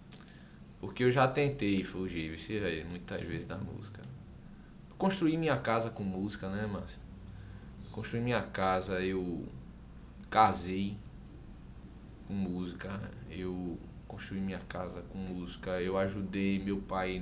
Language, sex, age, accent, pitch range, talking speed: Portuguese, male, 20-39, Brazilian, 90-115 Hz, 115 wpm